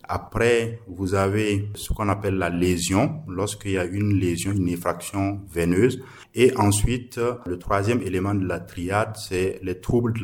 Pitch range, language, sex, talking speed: 90-105 Hz, French, male, 165 wpm